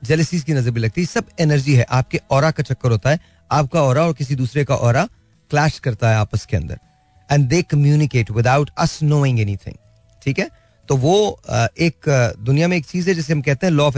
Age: 30-49